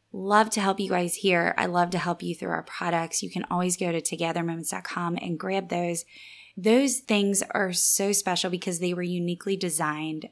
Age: 20-39